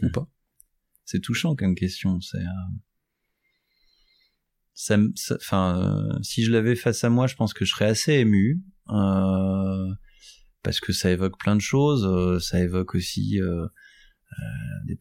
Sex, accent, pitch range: male, French, 95-120 Hz